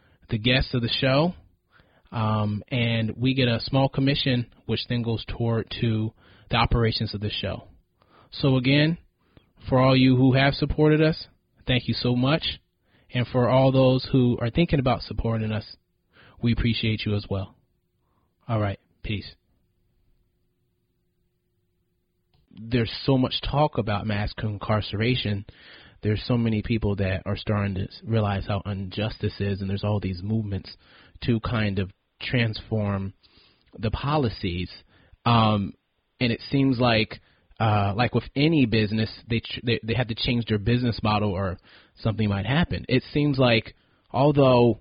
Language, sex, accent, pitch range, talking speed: English, male, American, 100-125 Hz, 150 wpm